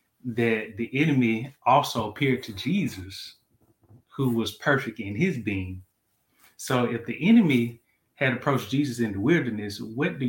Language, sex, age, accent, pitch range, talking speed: English, male, 20-39, American, 115-135 Hz, 145 wpm